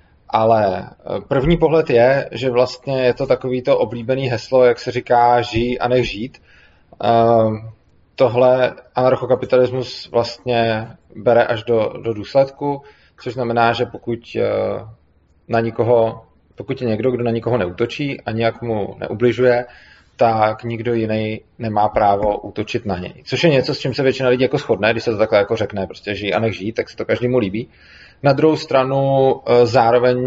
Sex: male